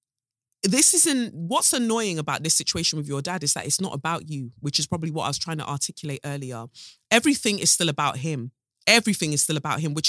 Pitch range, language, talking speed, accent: 155-215 Hz, English, 220 wpm, British